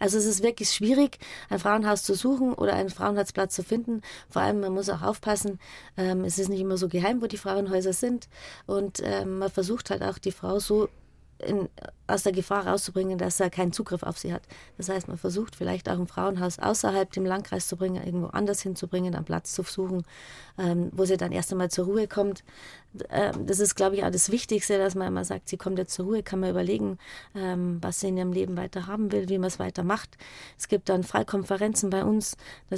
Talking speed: 220 wpm